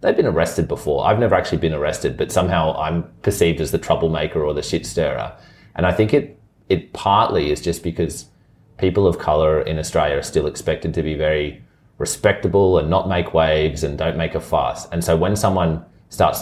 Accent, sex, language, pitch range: Australian, male, English, 75-90 Hz